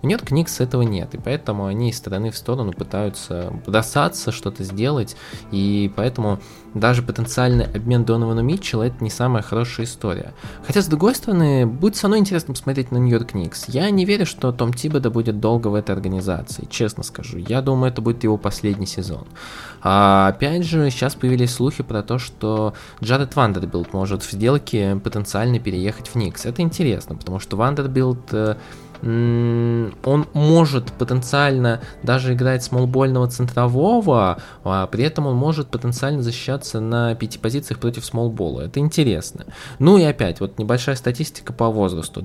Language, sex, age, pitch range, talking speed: Russian, male, 20-39, 110-135 Hz, 160 wpm